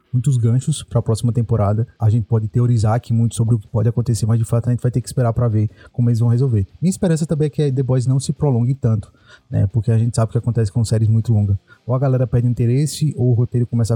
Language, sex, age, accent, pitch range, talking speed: Portuguese, male, 20-39, Brazilian, 115-130 Hz, 270 wpm